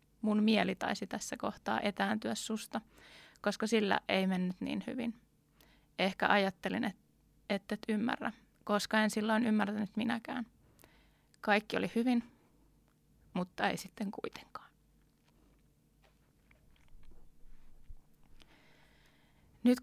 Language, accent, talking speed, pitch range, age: Finnish, native, 95 wpm, 195-225 Hz, 20-39